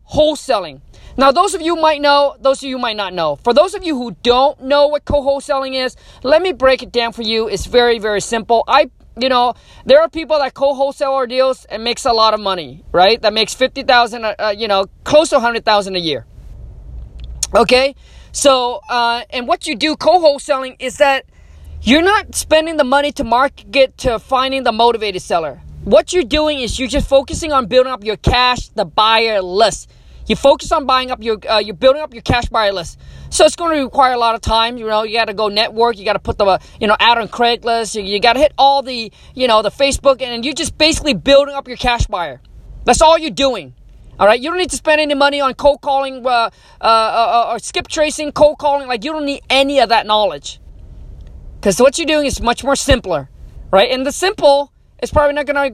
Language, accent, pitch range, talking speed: English, American, 225-285 Hz, 225 wpm